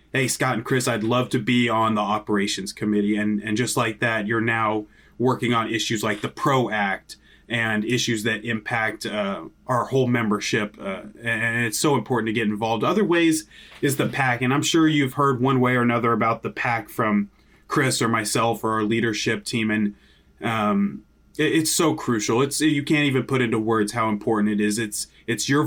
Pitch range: 110-130 Hz